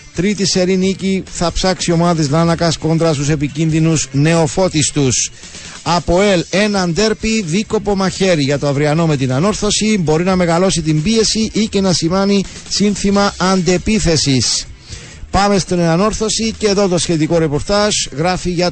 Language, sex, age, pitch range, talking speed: Greek, male, 50-69, 150-195 Hz, 140 wpm